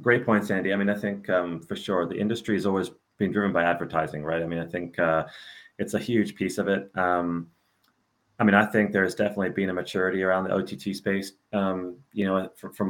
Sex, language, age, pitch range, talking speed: male, English, 30-49, 95-110 Hz, 230 wpm